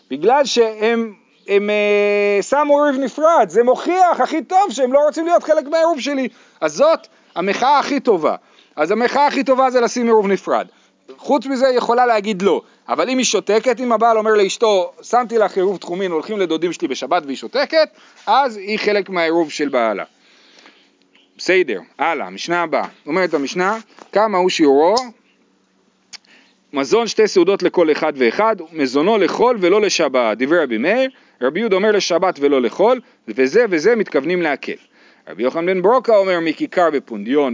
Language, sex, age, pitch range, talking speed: Hebrew, male, 40-59, 185-270 Hz, 160 wpm